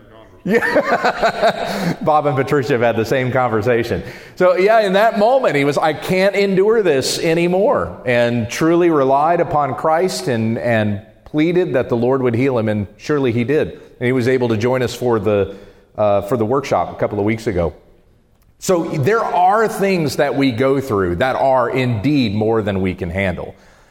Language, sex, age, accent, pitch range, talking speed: English, male, 40-59, American, 120-185 Hz, 185 wpm